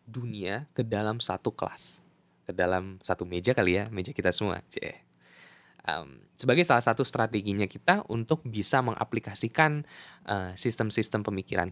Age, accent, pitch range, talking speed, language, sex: 10-29, native, 95-135 Hz, 135 wpm, Indonesian, male